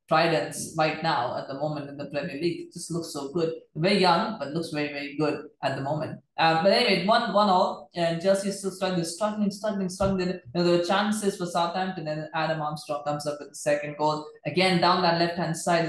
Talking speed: 225 wpm